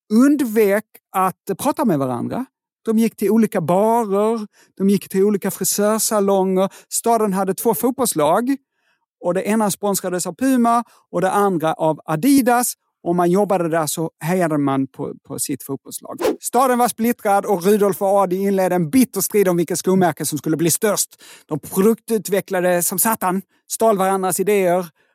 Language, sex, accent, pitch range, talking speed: Swedish, male, native, 180-225 Hz, 155 wpm